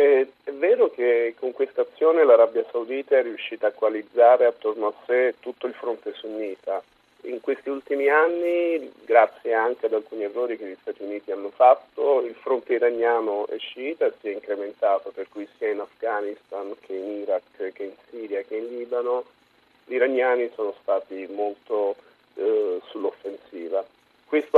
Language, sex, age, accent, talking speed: Italian, male, 40-59, native, 155 wpm